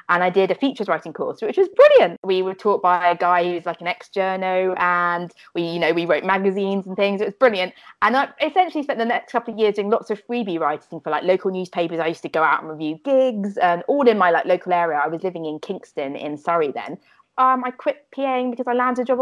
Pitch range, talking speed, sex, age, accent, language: 175-220 Hz, 260 wpm, female, 20-39, British, English